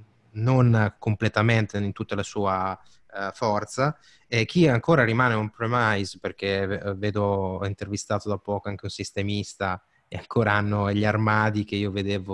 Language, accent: Italian, native